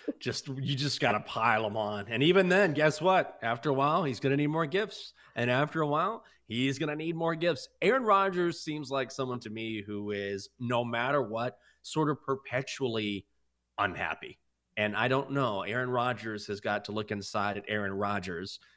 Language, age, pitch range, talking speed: English, 30-49, 105-140 Hz, 200 wpm